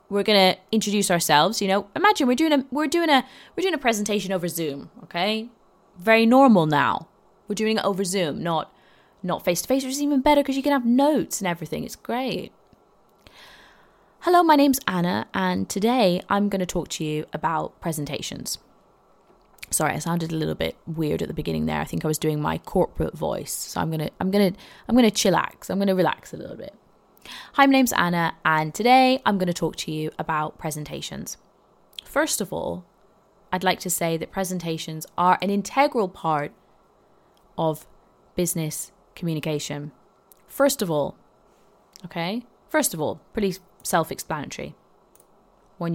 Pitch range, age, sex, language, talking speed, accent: 165-255 Hz, 20-39, female, English, 180 wpm, British